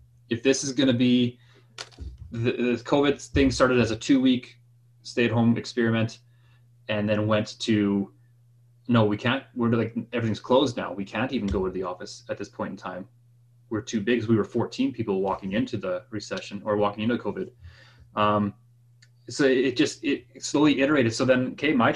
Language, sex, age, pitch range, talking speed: English, male, 20-39, 105-120 Hz, 190 wpm